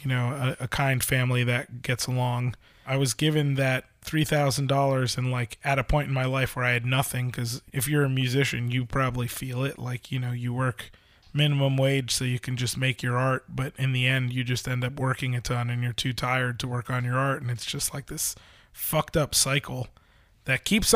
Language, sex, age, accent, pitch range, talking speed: English, male, 20-39, American, 125-150 Hz, 230 wpm